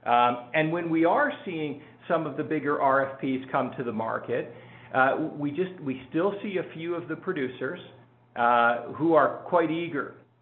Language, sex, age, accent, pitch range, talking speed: English, male, 50-69, American, 130-165 Hz, 180 wpm